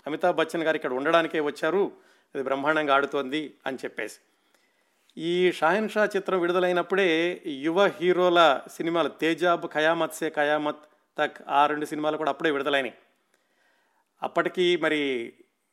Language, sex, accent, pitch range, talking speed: Telugu, male, native, 145-175 Hz, 120 wpm